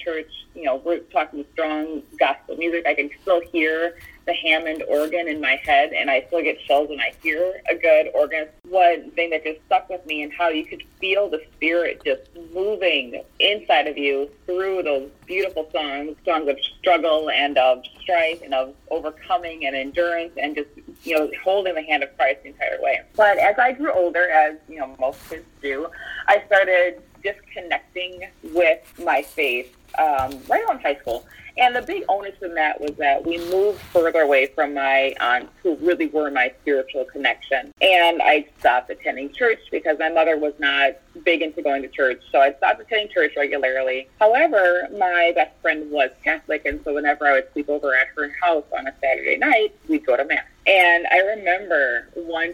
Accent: American